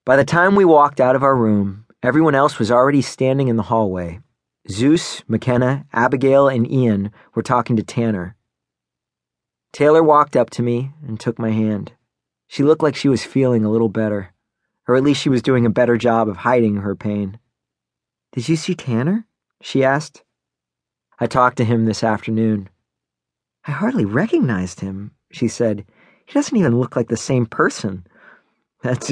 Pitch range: 110-140 Hz